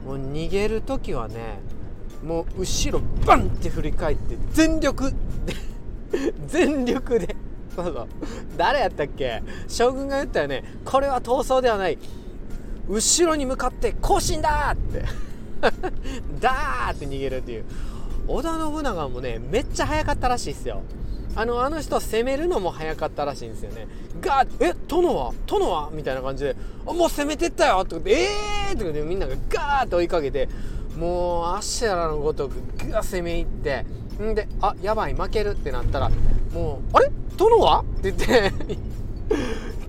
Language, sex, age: Japanese, male, 40-59